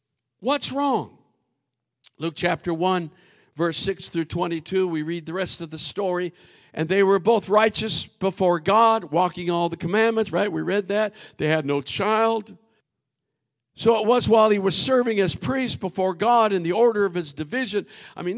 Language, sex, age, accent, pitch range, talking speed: English, male, 50-69, American, 160-205 Hz, 175 wpm